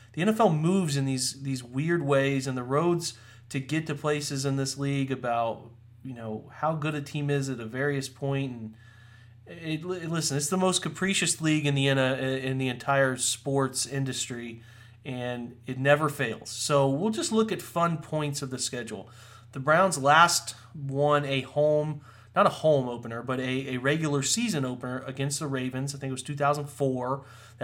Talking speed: 180 wpm